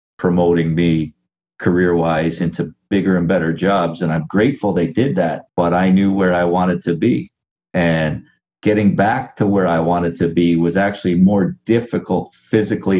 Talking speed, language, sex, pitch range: 165 wpm, English, male, 85-100 Hz